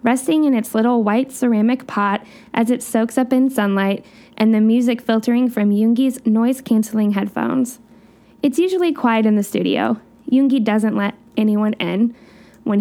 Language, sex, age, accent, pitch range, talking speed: English, female, 10-29, American, 215-255 Hz, 155 wpm